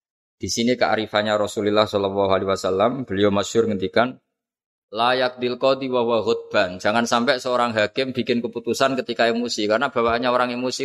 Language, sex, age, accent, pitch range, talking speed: Indonesian, male, 20-39, native, 105-125 Hz, 135 wpm